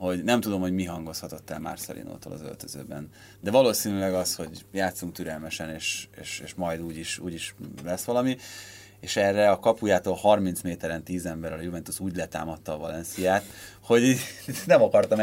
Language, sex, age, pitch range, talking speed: Hungarian, male, 30-49, 80-105 Hz, 170 wpm